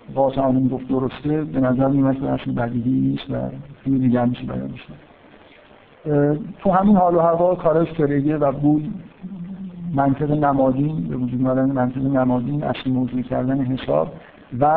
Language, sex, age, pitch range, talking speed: Persian, male, 50-69, 130-160 Hz, 150 wpm